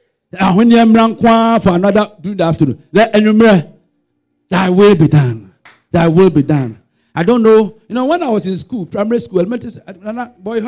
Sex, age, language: male, 50-69, English